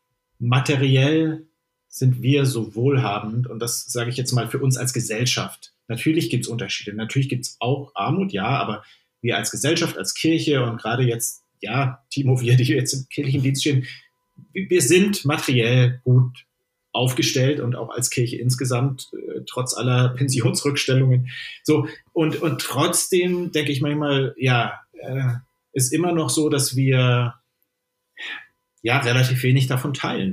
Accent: German